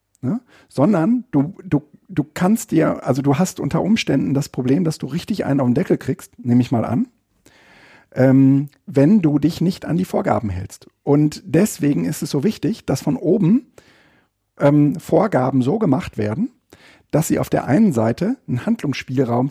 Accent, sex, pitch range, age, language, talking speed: German, male, 125-185 Hz, 50-69, German, 170 wpm